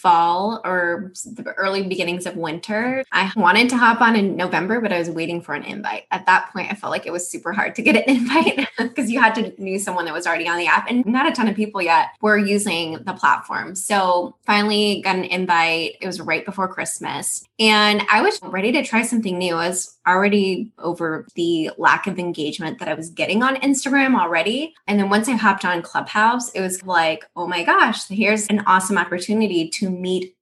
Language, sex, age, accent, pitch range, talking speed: English, female, 20-39, American, 180-230 Hz, 215 wpm